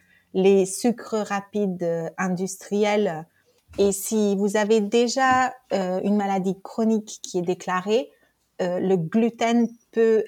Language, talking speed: French, 115 wpm